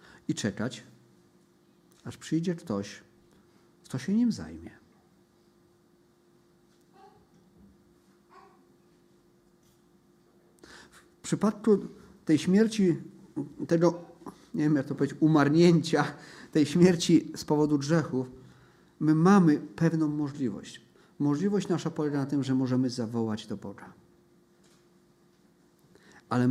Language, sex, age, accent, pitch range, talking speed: Polish, male, 50-69, native, 125-160 Hz, 90 wpm